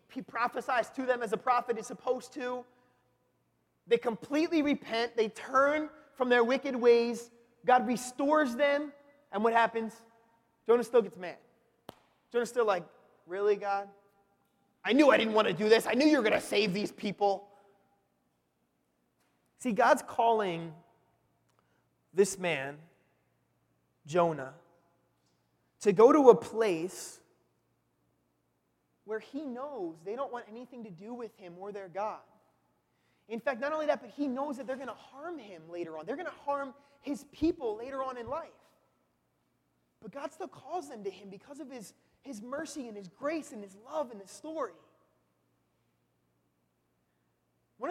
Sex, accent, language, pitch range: male, American, English, 180-265 Hz